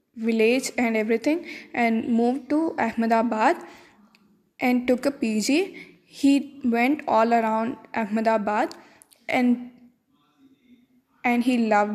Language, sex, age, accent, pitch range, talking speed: English, female, 10-29, Indian, 230-275 Hz, 100 wpm